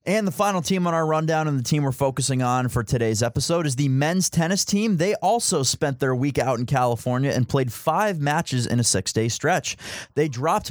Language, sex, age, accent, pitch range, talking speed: English, male, 20-39, American, 125-155 Hz, 220 wpm